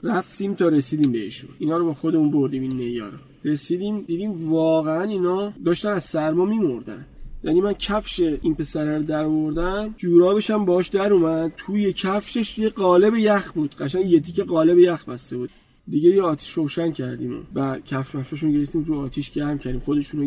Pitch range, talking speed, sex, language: 145-180 Hz, 175 wpm, male, Persian